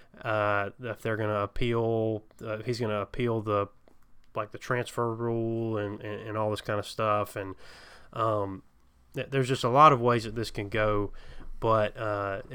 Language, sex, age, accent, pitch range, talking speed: English, male, 20-39, American, 105-115 Hz, 185 wpm